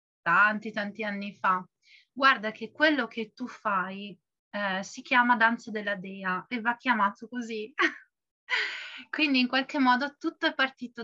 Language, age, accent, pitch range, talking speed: Italian, 30-49, native, 210-250 Hz, 145 wpm